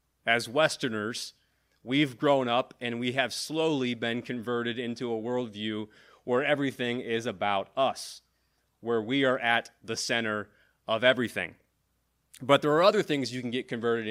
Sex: male